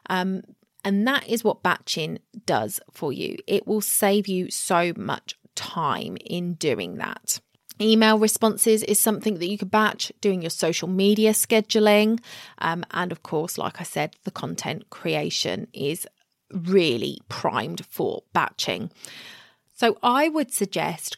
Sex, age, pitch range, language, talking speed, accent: female, 20-39, 180-215 Hz, English, 145 wpm, British